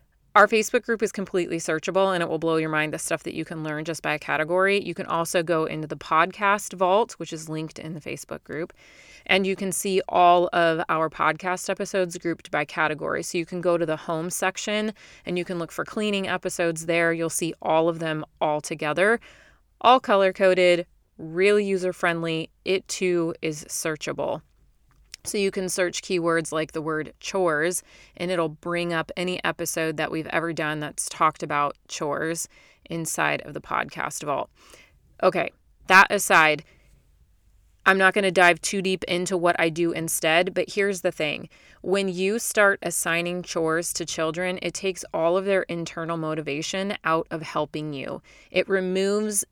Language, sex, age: English, female, 30-49